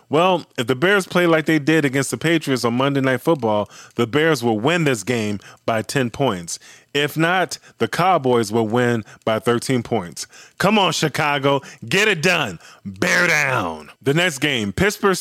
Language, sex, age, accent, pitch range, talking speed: English, male, 20-39, American, 120-175 Hz, 180 wpm